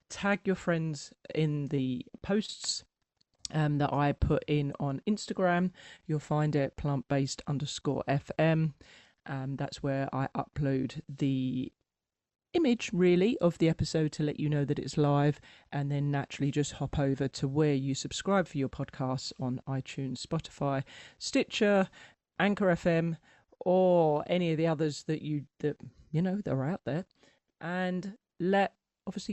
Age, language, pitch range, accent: 40-59, English, 135-175 Hz, British